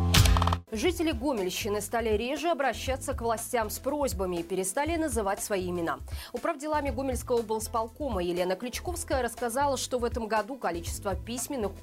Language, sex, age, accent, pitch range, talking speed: Russian, female, 20-39, native, 205-290 Hz, 130 wpm